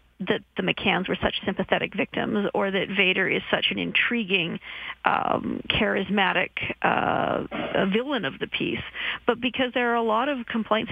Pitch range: 195-230 Hz